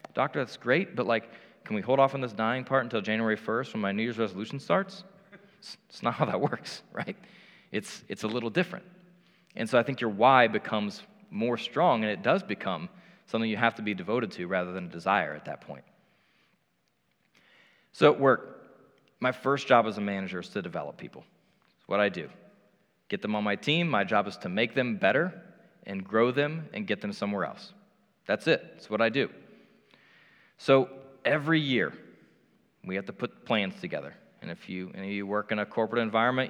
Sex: male